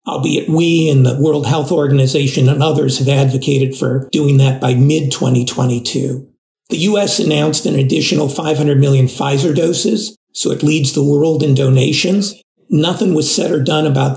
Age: 50-69